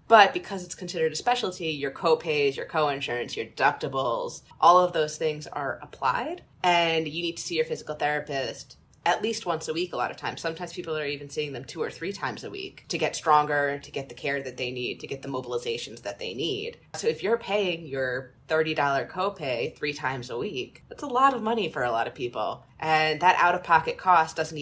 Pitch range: 145-195 Hz